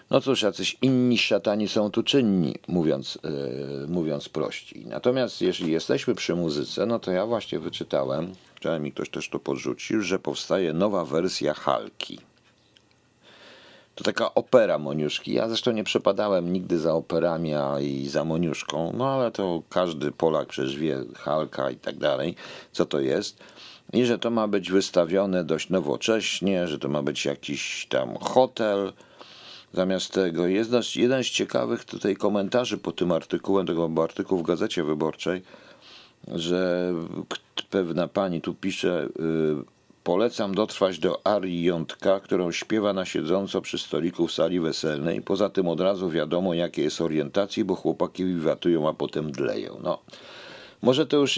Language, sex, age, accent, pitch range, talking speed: Polish, male, 50-69, native, 85-110 Hz, 150 wpm